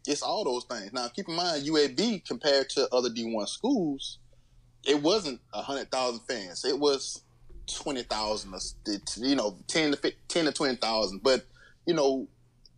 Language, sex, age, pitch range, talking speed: English, male, 20-39, 105-130 Hz, 175 wpm